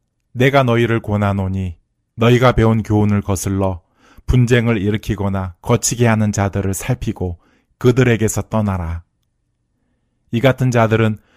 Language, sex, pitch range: Korean, male, 95-120 Hz